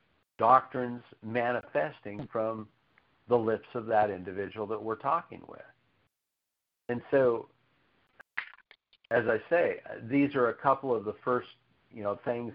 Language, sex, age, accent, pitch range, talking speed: English, male, 50-69, American, 90-110 Hz, 130 wpm